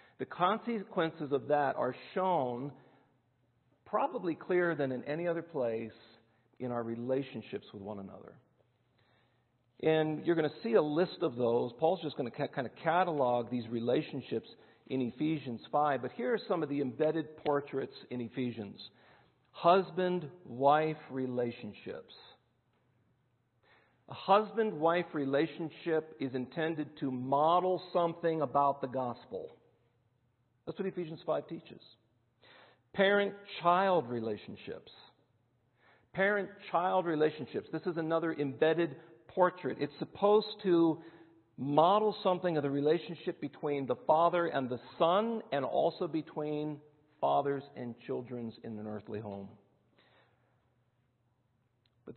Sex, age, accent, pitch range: male, 50-69, American, 125-170 Hz